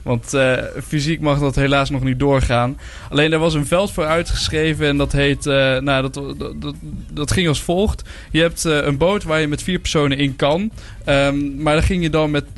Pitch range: 125-150 Hz